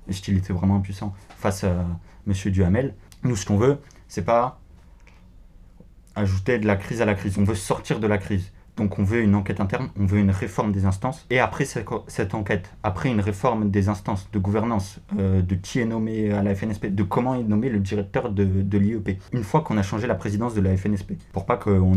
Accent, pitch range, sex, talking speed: French, 95-110 Hz, male, 225 wpm